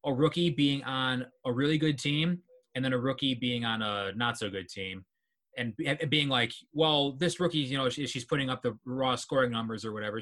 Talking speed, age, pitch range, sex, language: 210 wpm, 20-39, 110-145 Hz, male, English